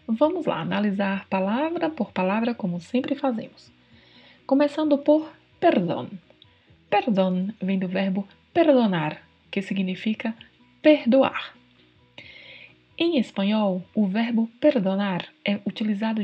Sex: female